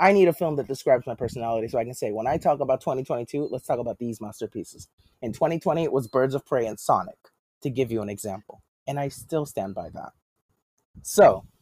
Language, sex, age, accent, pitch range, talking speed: English, male, 20-39, American, 120-165 Hz, 220 wpm